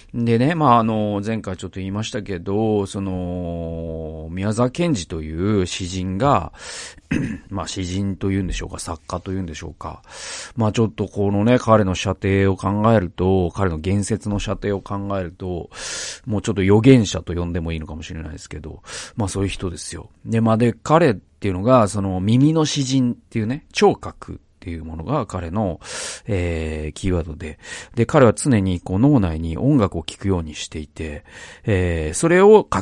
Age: 40-59